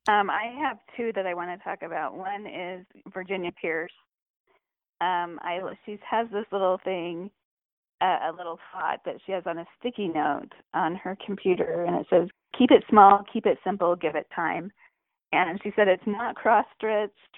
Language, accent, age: English, American, 30-49